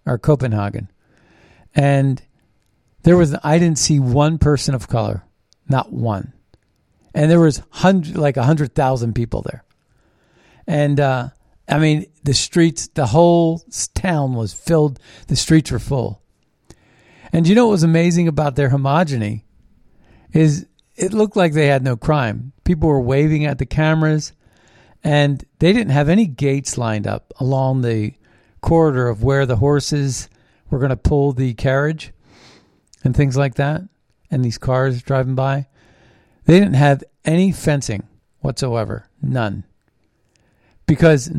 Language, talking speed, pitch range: English, 140 wpm, 120-155 Hz